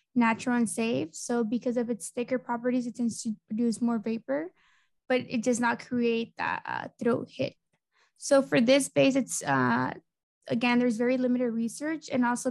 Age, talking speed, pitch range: 20-39, 175 wpm, 235-255 Hz